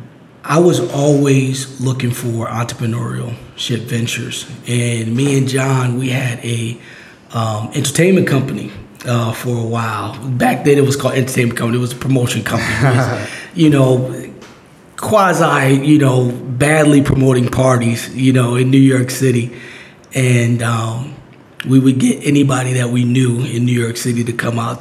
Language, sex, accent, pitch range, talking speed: English, male, American, 115-130 Hz, 155 wpm